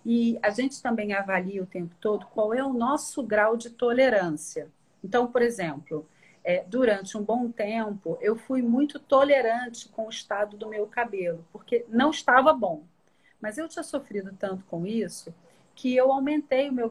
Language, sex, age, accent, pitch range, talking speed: Portuguese, female, 40-59, Brazilian, 195-245 Hz, 170 wpm